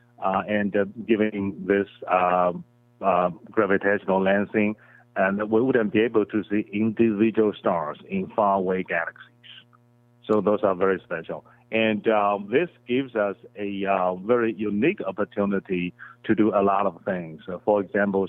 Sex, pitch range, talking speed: male, 95-120 Hz, 150 wpm